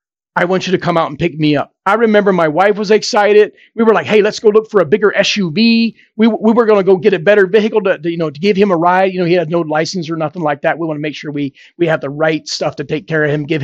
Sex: male